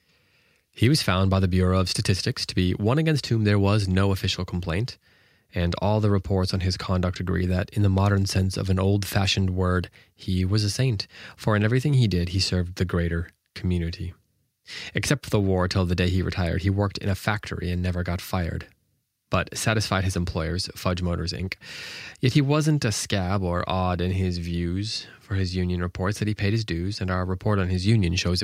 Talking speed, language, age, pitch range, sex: 210 wpm, English, 20-39, 90-105 Hz, male